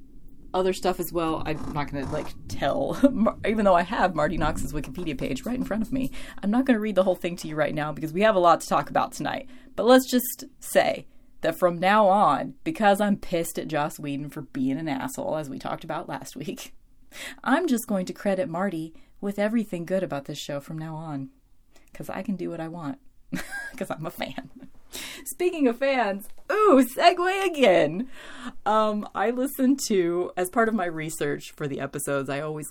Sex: female